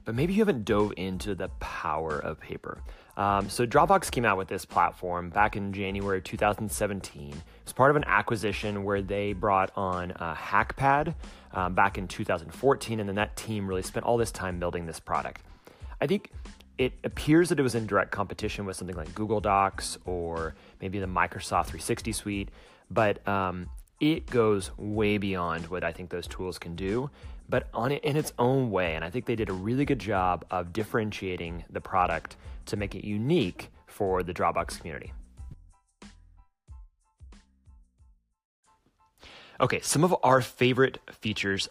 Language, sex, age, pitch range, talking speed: English, male, 30-49, 90-110 Hz, 165 wpm